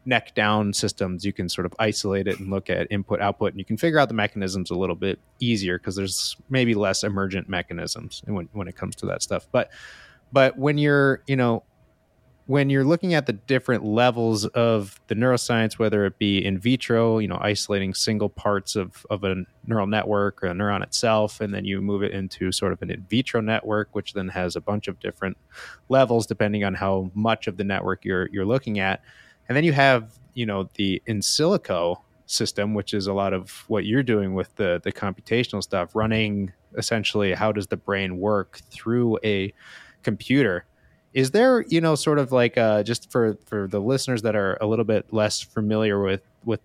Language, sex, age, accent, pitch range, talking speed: English, male, 20-39, American, 100-115 Hz, 205 wpm